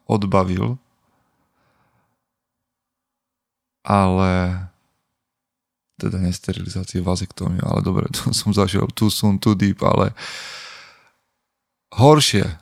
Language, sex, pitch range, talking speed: Slovak, male, 95-110 Hz, 75 wpm